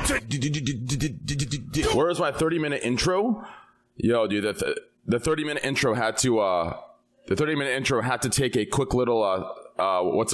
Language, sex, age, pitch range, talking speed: English, male, 20-39, 100-140 Hz, 150 wpm